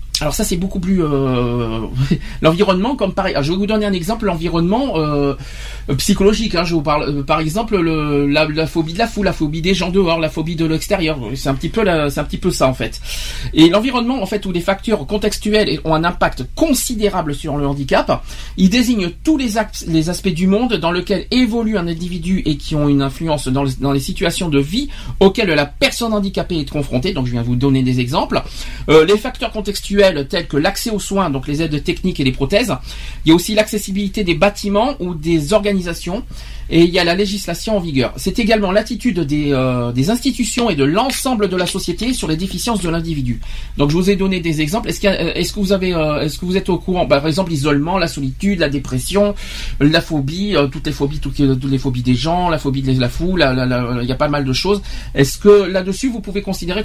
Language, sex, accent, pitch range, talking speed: French, male, French, 145-200 Hz, 230 wpm